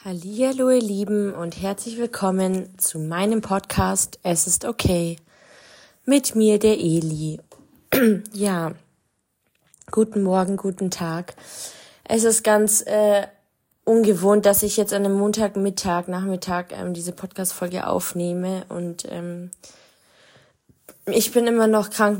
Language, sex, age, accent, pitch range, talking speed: German, female, 20-39, German, 180-205 Hz, 120 wpm